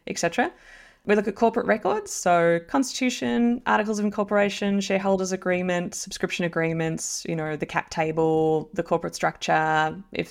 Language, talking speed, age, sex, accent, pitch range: English, 140 wpm, 20-39, female, Australian, 160-195 Hz